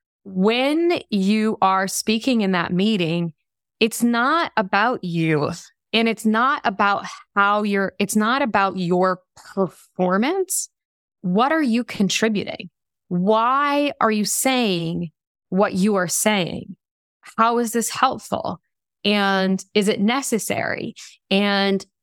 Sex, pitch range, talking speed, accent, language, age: female, 190-225 Hz, 115 wpm, American, English, 20-39